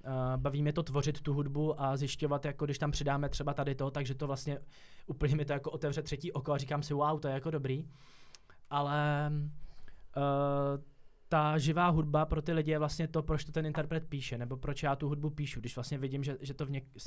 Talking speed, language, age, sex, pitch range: 225 wpm, Czech, 20-39, male, 135-150 Hz